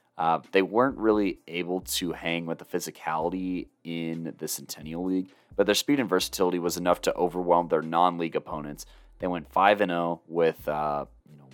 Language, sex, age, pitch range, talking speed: English, male, 30-49, 80-90 Hz, 175 wpm